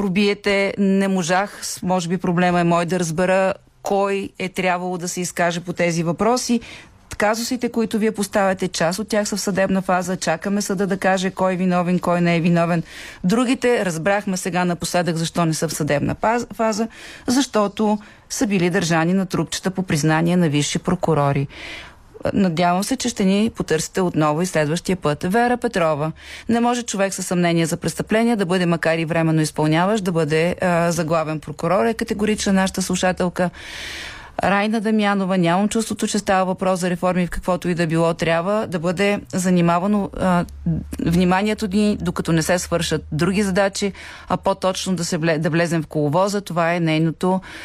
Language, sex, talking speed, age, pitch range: Bulgarian, female, 170 wpm, 40-59, 170-205 Hz